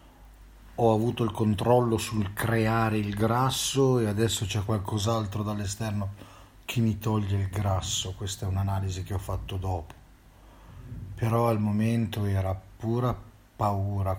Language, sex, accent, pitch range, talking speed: Italian, male, native, 95-110 Hz, 130 wpm